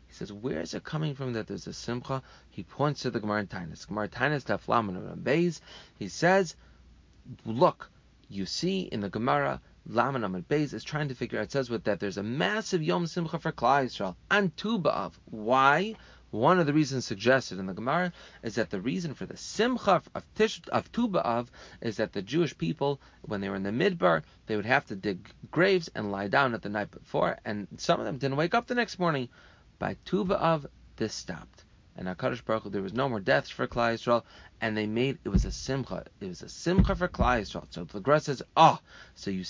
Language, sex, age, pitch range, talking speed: English, male, 30-49, 105-155 Hz, 215 wpm